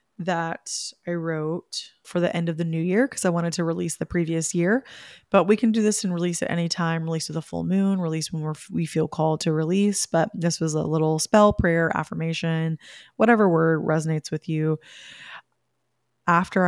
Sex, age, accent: female, 20-39, American